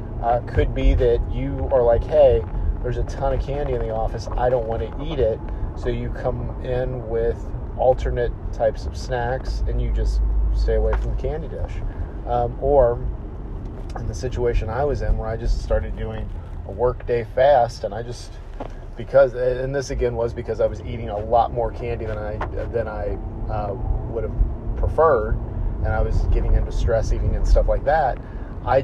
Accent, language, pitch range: American, English, 100-120 Hz